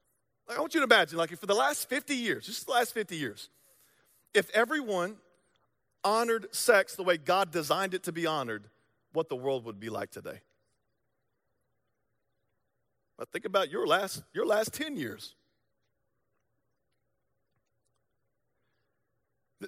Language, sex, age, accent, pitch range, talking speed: English, male, 40-59, American, 160-215 Hz, 145 wpm